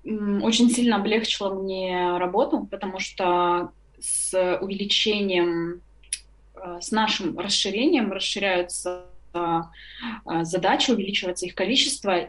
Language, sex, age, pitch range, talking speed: Russian, female, 20-39, 190-245 Hz, 85 wpm